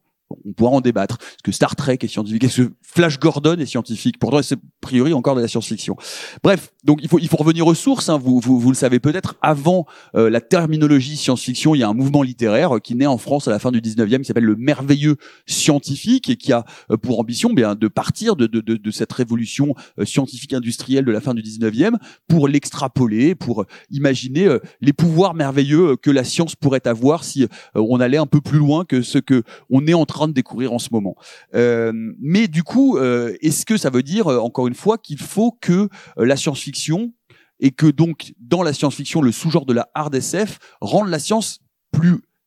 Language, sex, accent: French, male, French